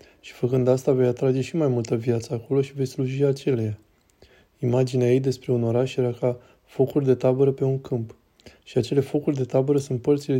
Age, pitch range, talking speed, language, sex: 20-39, 125-140 Hz, 195 wpm, Romanian, male